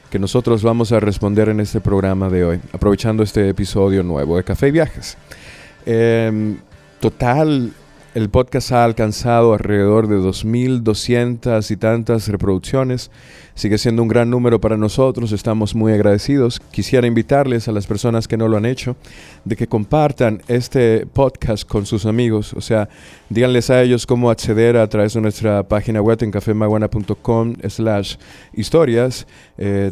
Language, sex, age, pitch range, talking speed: Spanish, male, 30-49, 105-120 Hz, 155 wpm